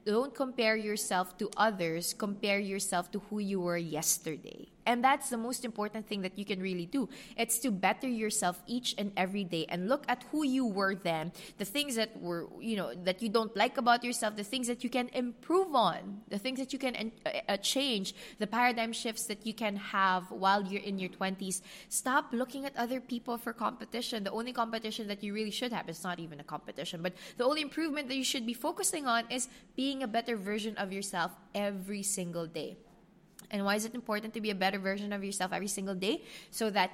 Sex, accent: female, Filipino